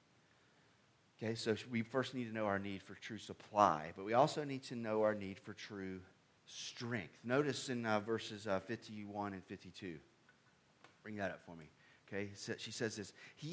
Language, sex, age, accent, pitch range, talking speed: English, male, 30-49, American, 110-140 Hz, 180 wpm